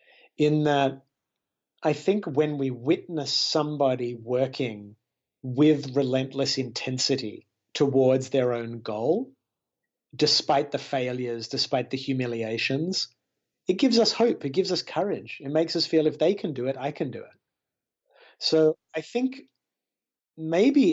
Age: 30-49